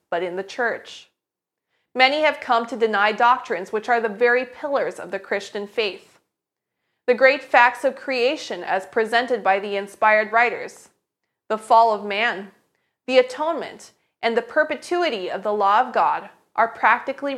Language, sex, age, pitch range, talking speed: English, female, 30-49, 215-270 Hz, 160 wpm